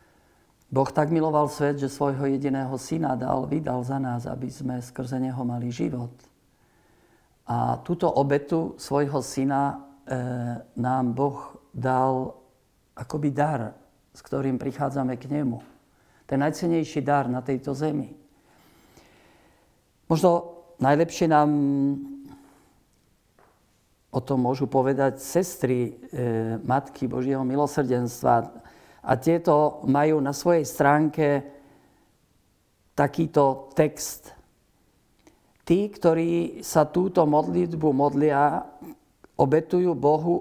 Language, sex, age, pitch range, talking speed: Slovak, male, 50-69, 130-155 Hz, 100 wpm